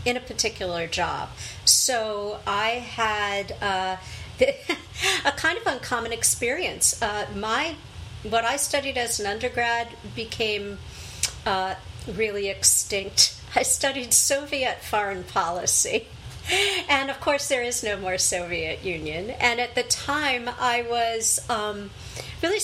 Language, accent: English, American